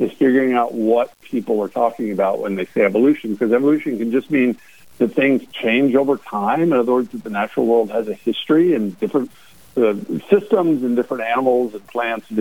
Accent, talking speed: American, 205 wpm